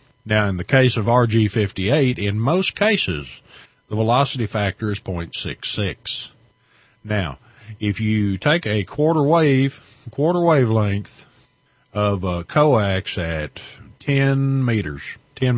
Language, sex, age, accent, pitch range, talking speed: English, male, 50-69, American, 105-135 Hz, 115 wpm